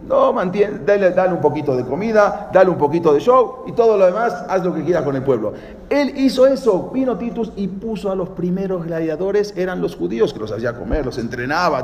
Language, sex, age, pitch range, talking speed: English, male, 40-59, 145-225 Hz, 225 wpm